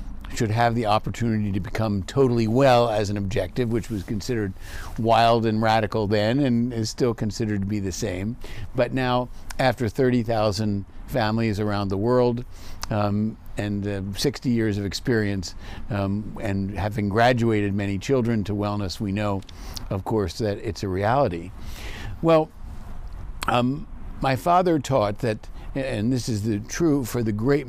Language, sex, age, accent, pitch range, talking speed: English, male, 50-69, American, 100-125 Hz, 155 wpm